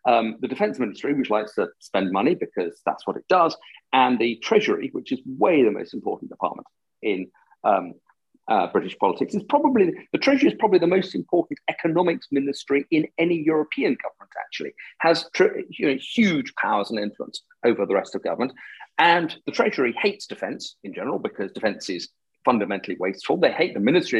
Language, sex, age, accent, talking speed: English, male, 40-59, British, 185 wpm